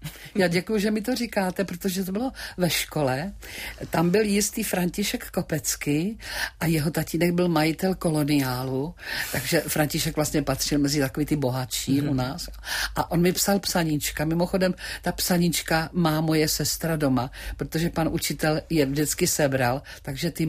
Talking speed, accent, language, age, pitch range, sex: 150 wpm, native, Czech, 50-69, 140-180 Hz, female